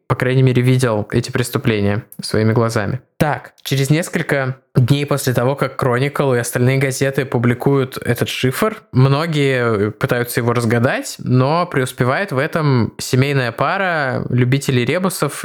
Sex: male